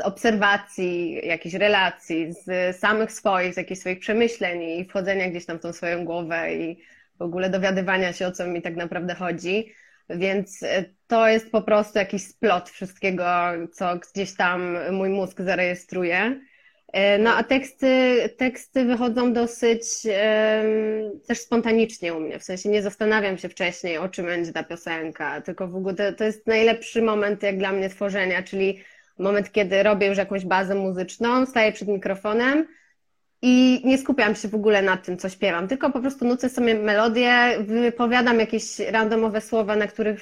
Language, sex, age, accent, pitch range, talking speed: Polish, female, 20-39, native, 185-225 Hz, 165 wpm